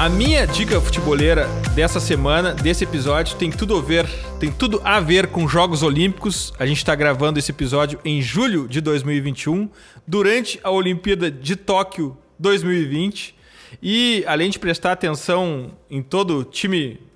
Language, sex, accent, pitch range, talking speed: Portuguese, male, Brazilian, 150-185 Hz, 155 wpm